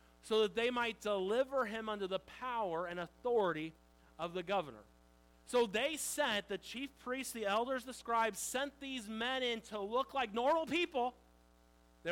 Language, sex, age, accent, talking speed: English, male, 40-59, American, 170 wpm